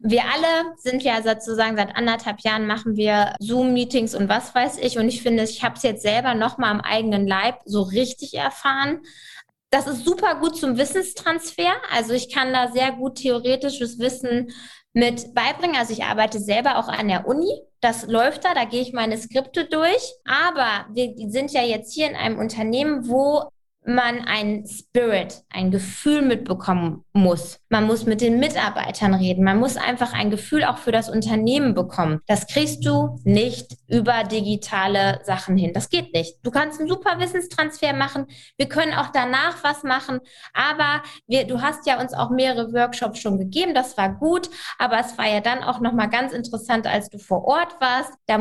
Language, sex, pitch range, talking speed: German, female, 215-275 Hz, 185 wpm